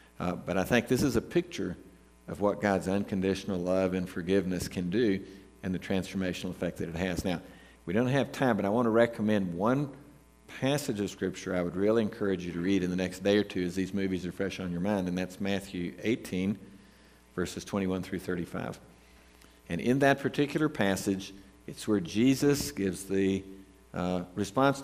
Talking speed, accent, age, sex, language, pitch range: 190 wpm, American, 50-69, male, English, 90-110 Hz